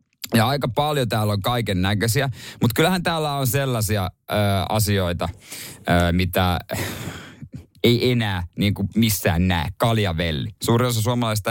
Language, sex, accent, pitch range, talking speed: Finnish, male, native, 100-130 Hz, 135 wpm